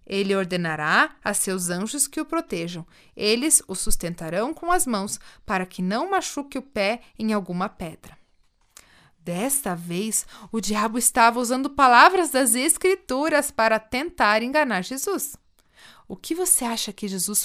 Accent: Brazilian